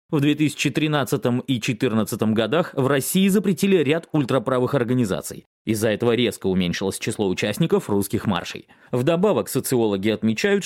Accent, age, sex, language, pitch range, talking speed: native, 30-49, male, Russian, 110-165 Hz, 125 wpm